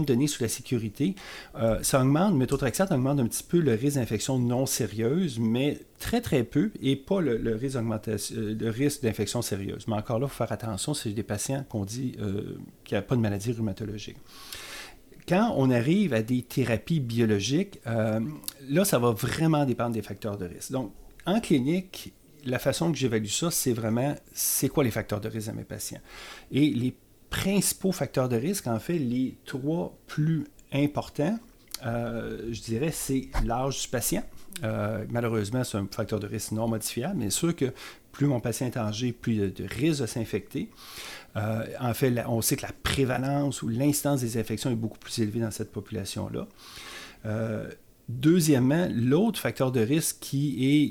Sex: male